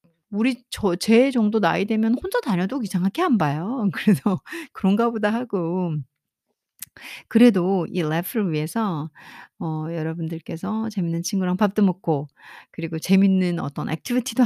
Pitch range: 165-220 Hz